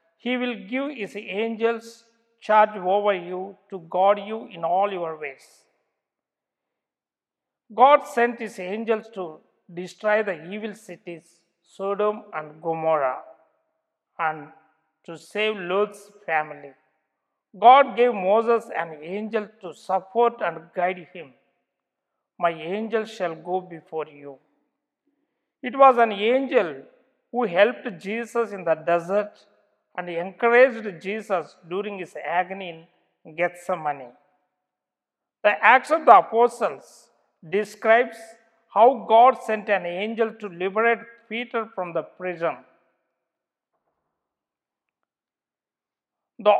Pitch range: 170-230 Hz